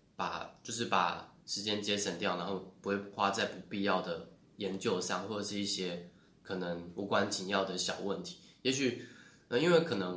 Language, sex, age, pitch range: Chinese, male, 20-39, 90-100 Hz